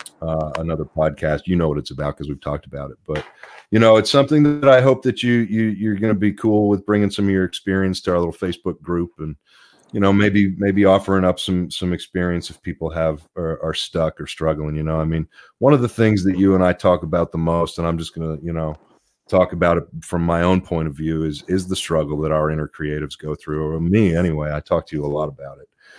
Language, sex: English, male